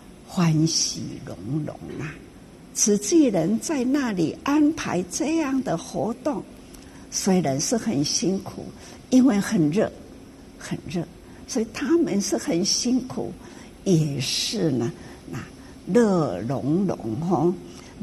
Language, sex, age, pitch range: Chinese, female, 60-79, 170-250 Hz